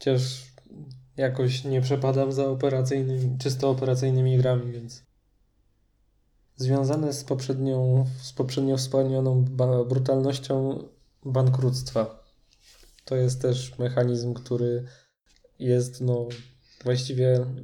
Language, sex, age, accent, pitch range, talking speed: Polish, male, 20-39, native, 125-135 Hz, 85 wpm